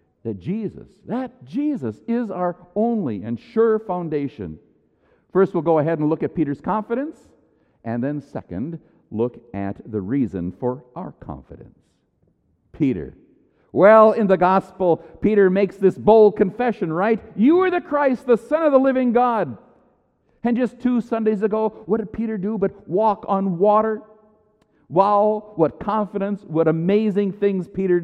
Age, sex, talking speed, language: 50-69, male, 150 wpm, English